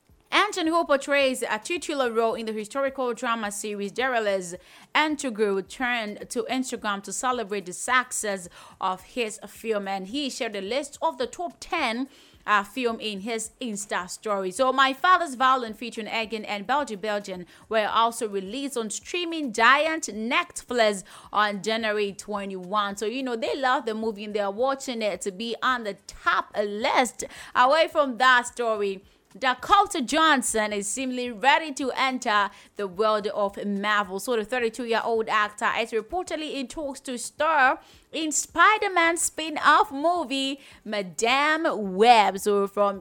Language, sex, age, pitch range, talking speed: English, female, 30-49, 210-275 Hz, 150 wpm